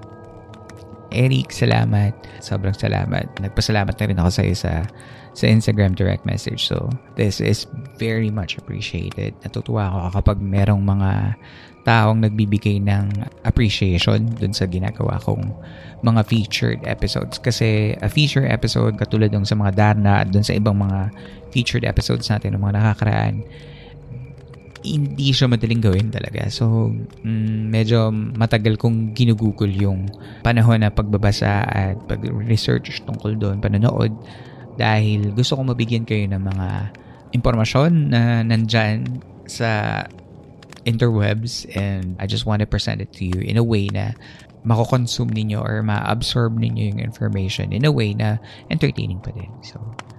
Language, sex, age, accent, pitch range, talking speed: Filipino, male, 20-39, native, 100-120 Hz, 135 wpm